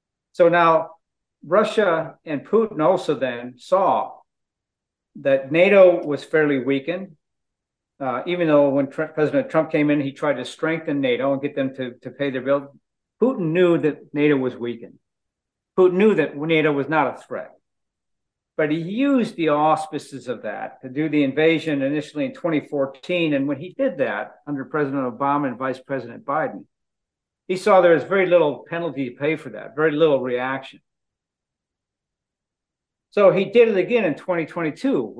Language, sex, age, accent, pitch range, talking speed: English, male, 50-69, American, 135-175 Hz, 160 wpm